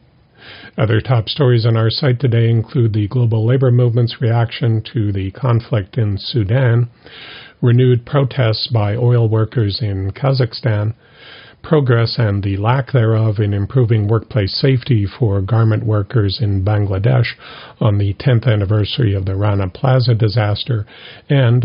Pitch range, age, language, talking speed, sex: 105-125 Hz, 50-69, English, 135 wpm, male